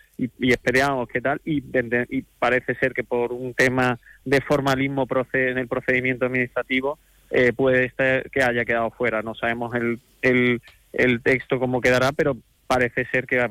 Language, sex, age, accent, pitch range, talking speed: Spanish, male, 20-39, Spanish, 120-130 Hz, 180 wpm